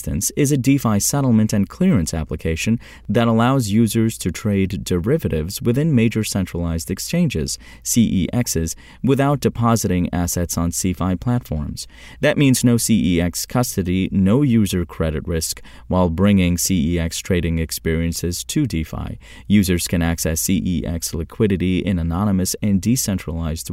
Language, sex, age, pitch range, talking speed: English, male, 30-49, 85-115 Hz, 125 wpm